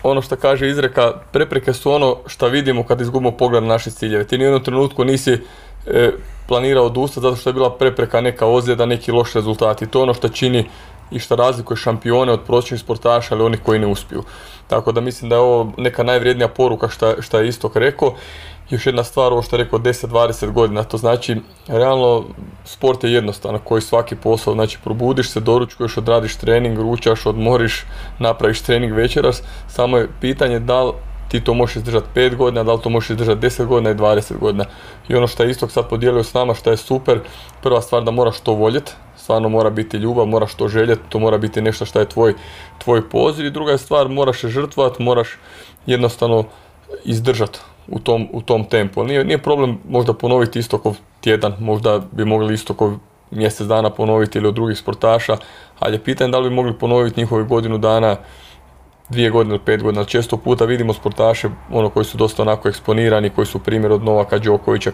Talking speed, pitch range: 195 wpm, 110-125 Hz